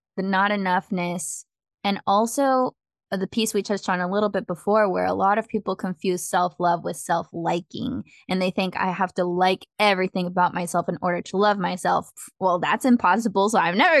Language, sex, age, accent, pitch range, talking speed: English, female, 10-29, American, 185-215 Hz, 195 wpm